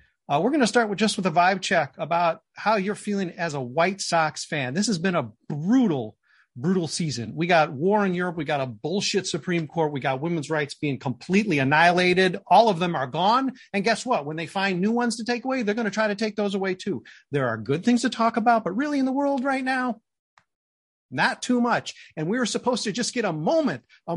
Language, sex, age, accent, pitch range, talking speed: English, male, 40-59, American, 150-215 Hz, 240 wpm